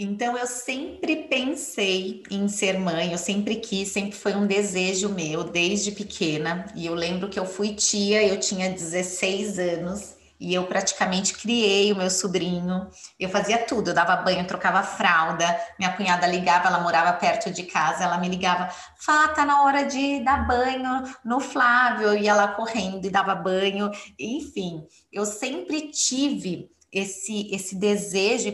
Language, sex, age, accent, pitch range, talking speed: Portuguese, female, 20-39, Brazilian, 185-240 Hz, 165 wpm